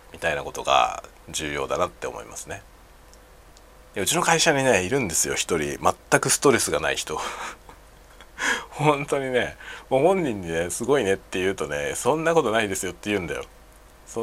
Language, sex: Japanese, male